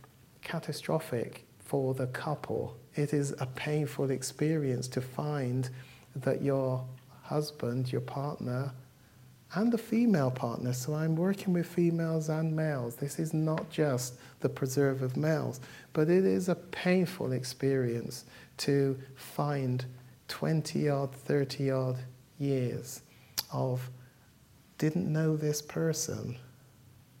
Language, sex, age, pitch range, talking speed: English, male, 50-69, 125-150 Hz, 115 wpm